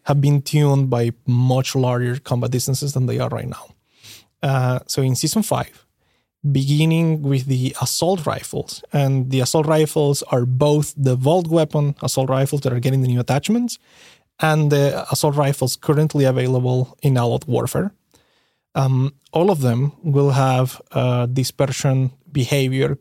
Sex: male